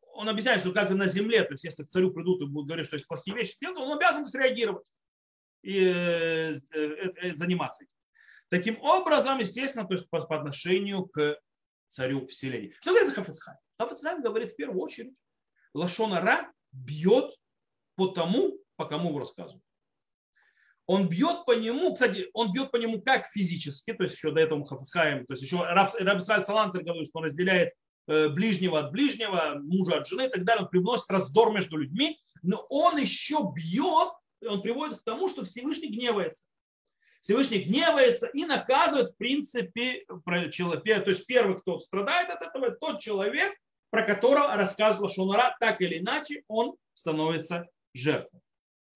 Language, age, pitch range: Russian, 30-49, 165-250 Hz